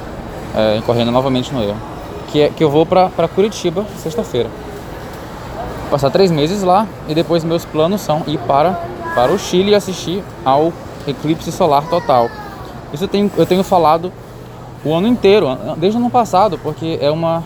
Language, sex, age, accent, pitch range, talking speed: Portuguese, male, 20-39, Brazilian, 130-175 Hz, 170 wpm